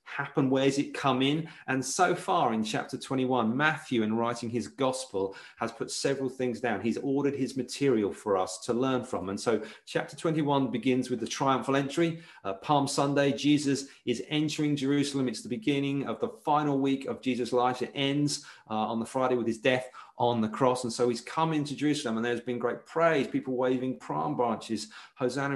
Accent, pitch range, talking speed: British, 125-145 Hz, 195 wpm